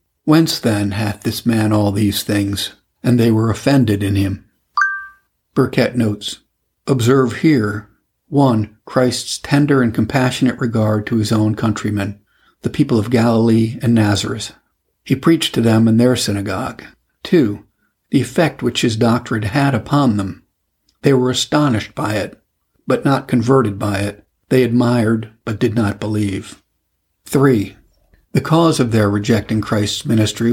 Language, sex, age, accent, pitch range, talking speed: English, male, 60-79, American, 105-125 Hz, 145 wpm